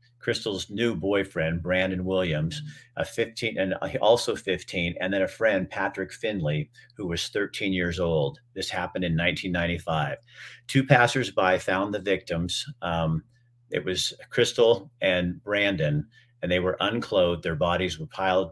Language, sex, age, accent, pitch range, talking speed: English, male, 40-59, American, 90-120 Hz, 145 wpm